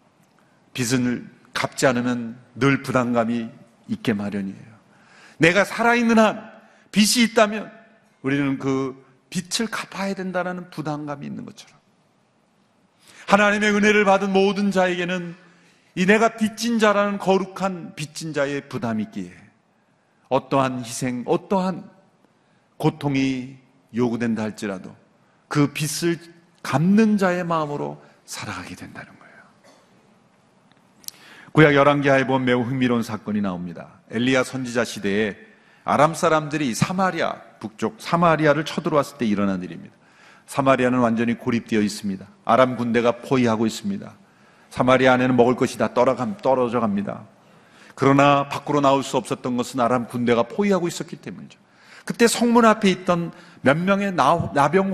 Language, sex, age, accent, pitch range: Korean, male, 40-59, native, 125-195 Hz